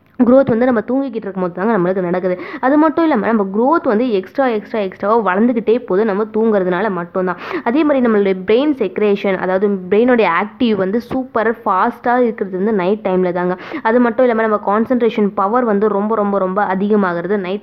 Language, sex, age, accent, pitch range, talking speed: Tamil, female, 20-39, native, 195-240 Hz, 175 wpm